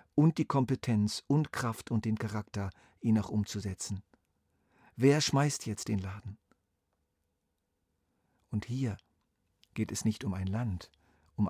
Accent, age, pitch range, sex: German, 50-69, 95-115 Hz, male